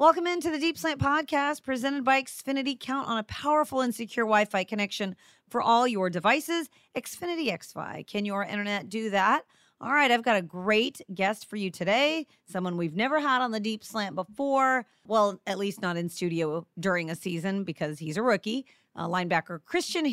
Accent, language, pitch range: American, English, 170-220 Hz